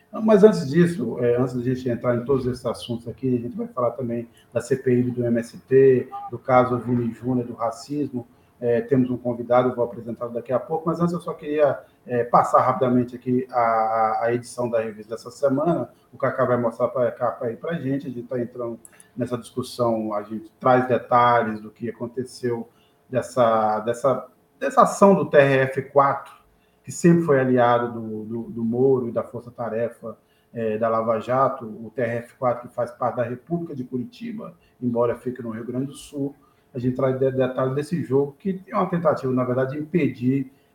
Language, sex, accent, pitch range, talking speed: Portuguese, male, Brazilian, 115-135 Hz, 185 wpm